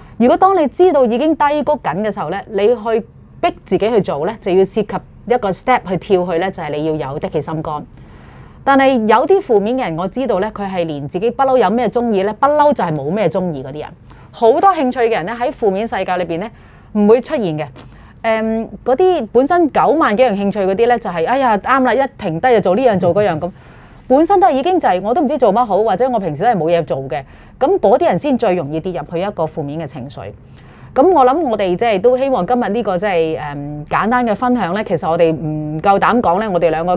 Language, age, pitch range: Chinese, 30-49, 165-240 Hz